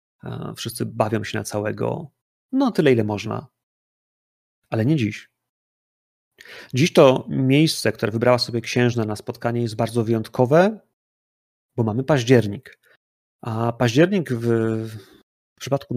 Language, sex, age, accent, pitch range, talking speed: Polish, male, 30-49, native, 115-140 Hz, 120 wpm